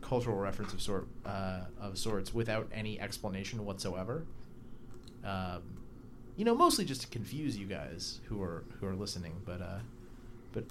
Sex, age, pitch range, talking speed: male, 30-49, 100-125 Hz, 155 wpm